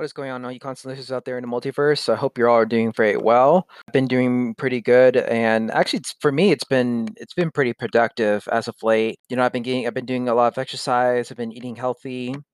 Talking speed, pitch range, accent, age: 260 wpm, 110-130 Hz, American, 20-39